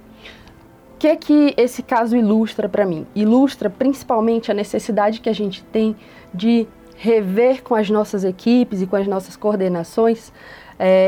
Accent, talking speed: Brazilian, 155 wpm